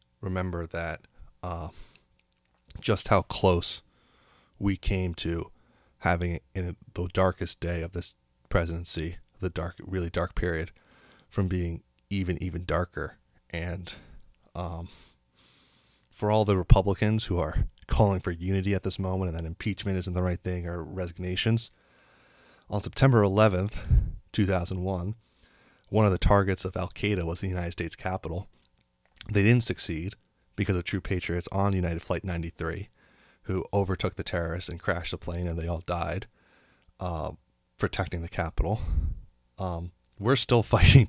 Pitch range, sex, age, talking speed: 85-100 Hz, male, 30-49, 140 wpm